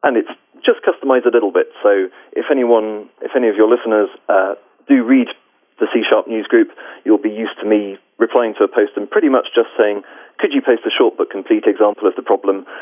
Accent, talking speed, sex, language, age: British, 220 wpm, male, English, 30-49